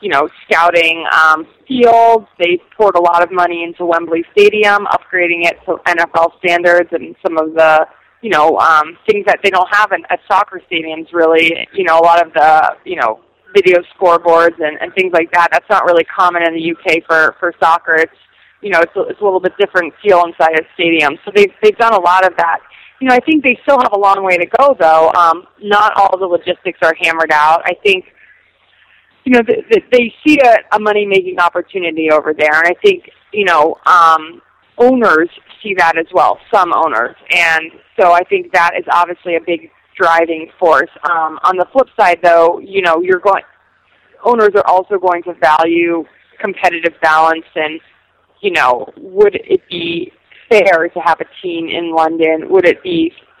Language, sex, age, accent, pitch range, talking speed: English, female, 20-39, American, 165-215 Hz, 195 wpm